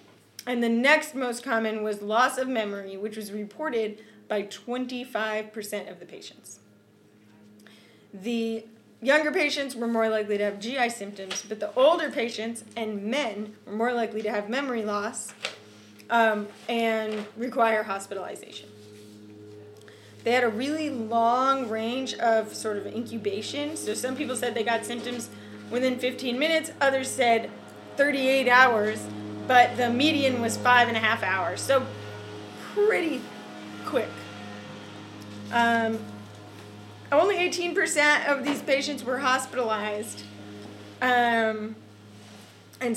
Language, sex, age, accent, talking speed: English, female, 20-39, American, 125 wpm